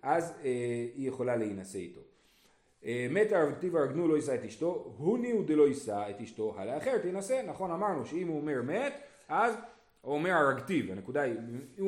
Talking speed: 180 wpm